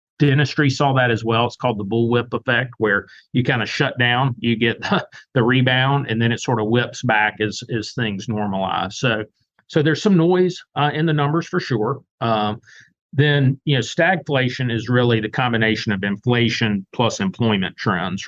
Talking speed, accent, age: 185 wpm, American, 40-59